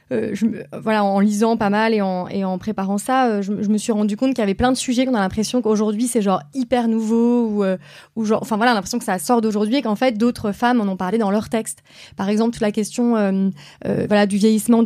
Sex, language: female, French